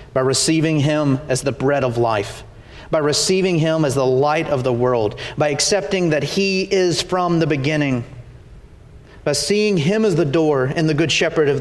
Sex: male